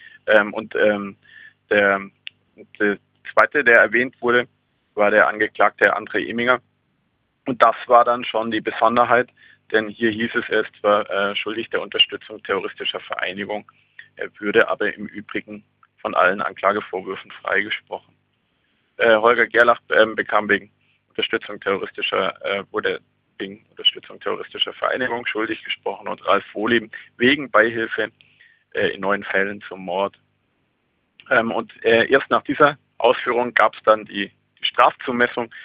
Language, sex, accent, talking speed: German, male, German, 135 wpm